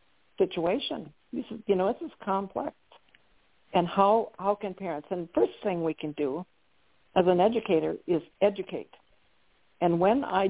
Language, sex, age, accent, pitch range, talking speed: English, female, 60-79, American, 170-205 Hz, 145 wpm